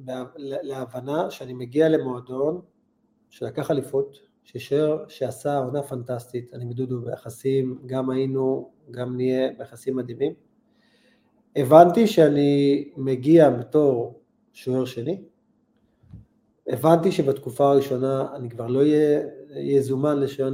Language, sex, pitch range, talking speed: Hebrew, male, 130-185 Hz, 100 wpm